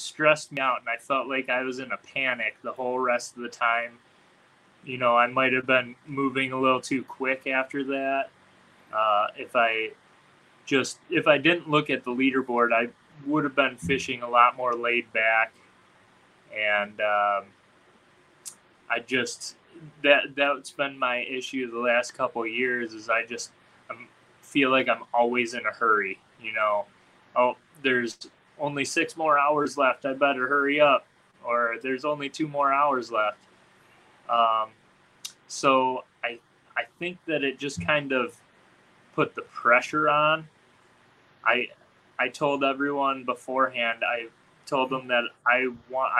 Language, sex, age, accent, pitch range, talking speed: English, male, 20-39, American, 120-140 Hz, 160 wpm